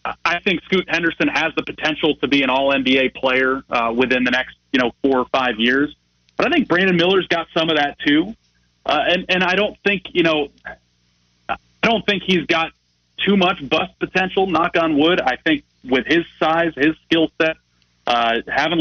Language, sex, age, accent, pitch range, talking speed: English, male, 30-49, American, 130-165 Hz, 200 wpm